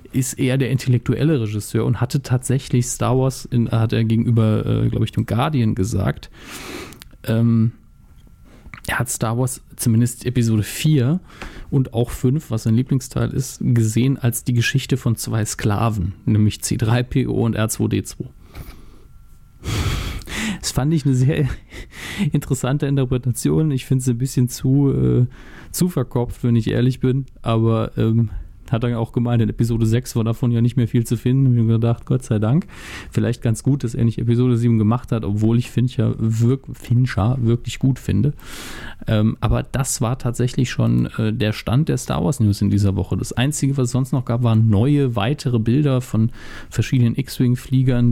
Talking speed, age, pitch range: 165 wpm, 40-59, 110-130 Hz